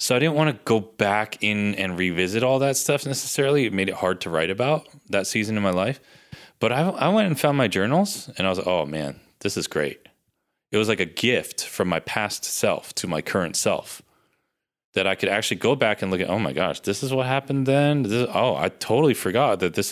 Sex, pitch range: male, 90-125 Hz